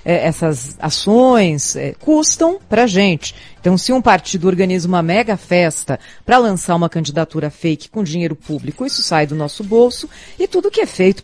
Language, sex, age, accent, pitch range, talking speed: Portuguese, female, 40-59, Brazilian, 160-235 Hz, 170 wpm